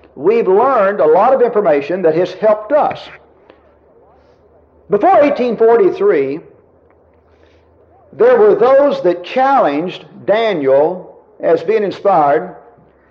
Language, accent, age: English, American, 50-69